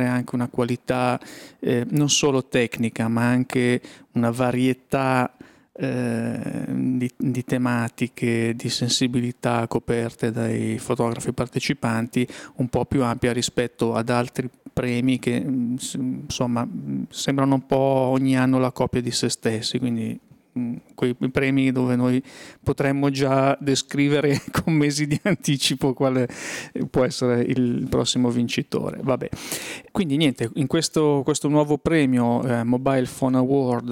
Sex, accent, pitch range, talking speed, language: male, native, 120-140 Hz, 120 wpm, Italian